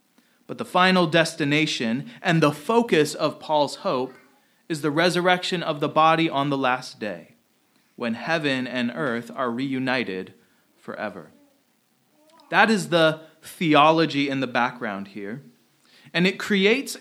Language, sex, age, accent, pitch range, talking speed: English, male, 30-49, American, 145-225 Hz, 135 wpm